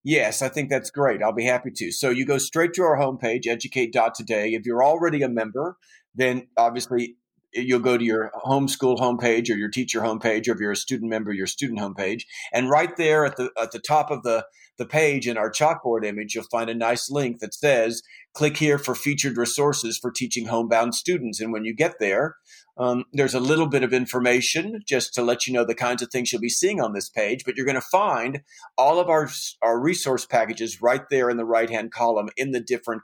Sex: male